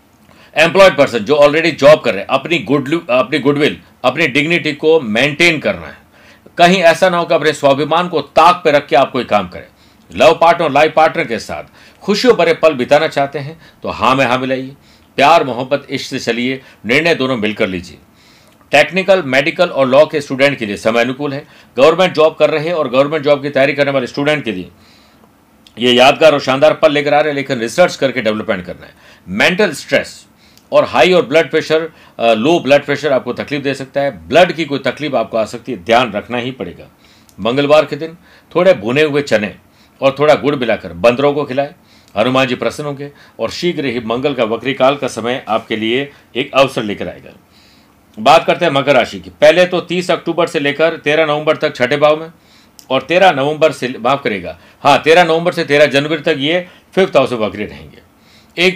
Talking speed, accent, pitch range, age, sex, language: 200 wpm, native, 125-160 Hz, 50-69, male, Hindi